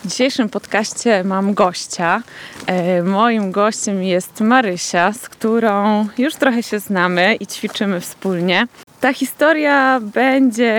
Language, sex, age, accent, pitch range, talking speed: Polish, female, 20-39, native, 200-250 Hz, 115 wpm